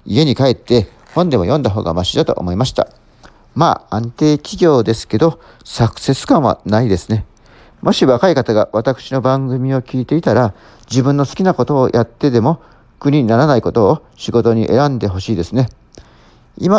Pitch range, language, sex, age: 110-145 Hz, Japanese, male, 40-59